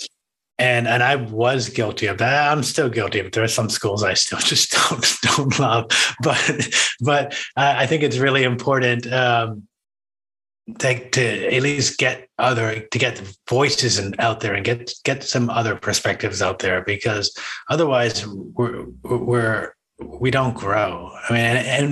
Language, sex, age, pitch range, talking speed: English, male, 30-49, 110-130 Hz, 165 wpm